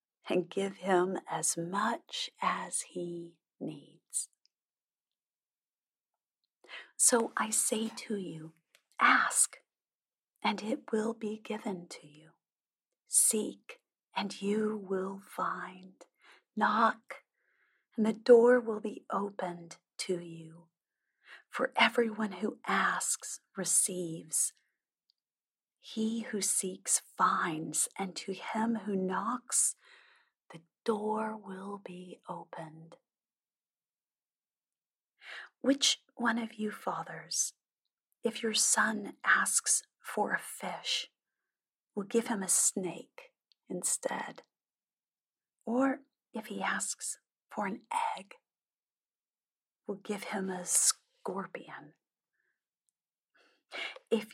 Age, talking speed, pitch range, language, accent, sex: 40-59, 95 wpm, 185-235 Hz, English, American, female